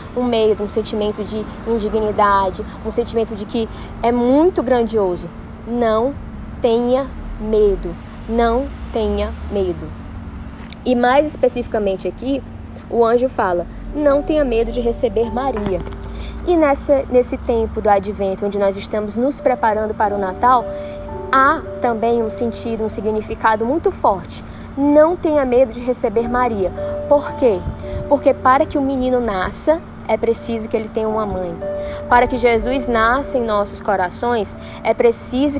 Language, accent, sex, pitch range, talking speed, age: Portuguese, Brazilian, female, 210-250 Hz, 140 wpm, 20-39